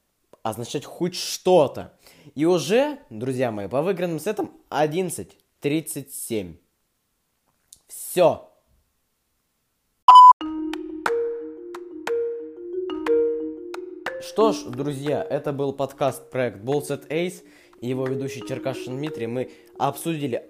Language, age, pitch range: Russian, 20-39, 120-175 Hz